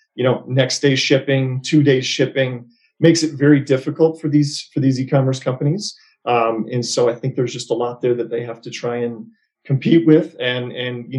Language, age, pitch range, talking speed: English, 40-59, 120-145 Hz, 210 wpm